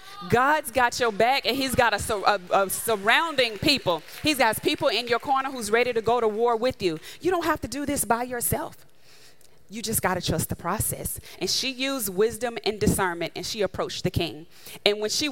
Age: 30-49